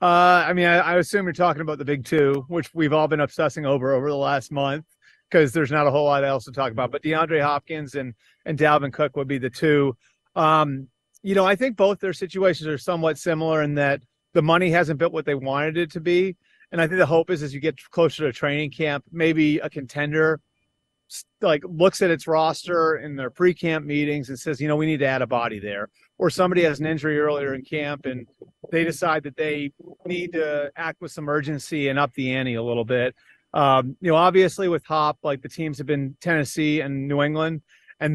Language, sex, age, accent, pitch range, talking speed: English, male, 30-49, American, 140-165 Hz, 225 wpm